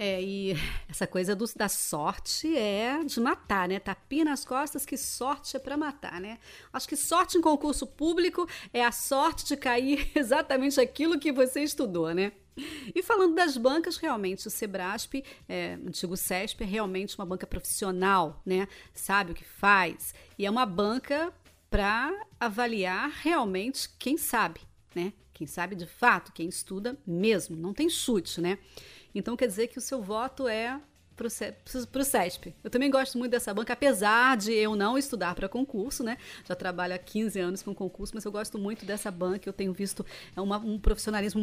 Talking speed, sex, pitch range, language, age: 175 wpm, female, 195-275 Hz, Portuguese, 40-59